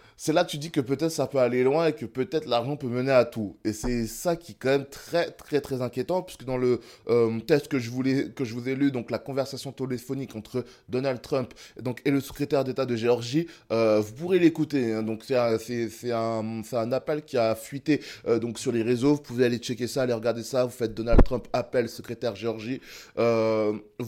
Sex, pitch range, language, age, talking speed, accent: male, 125-175 Hz, French, 20-39, 240 wpm, French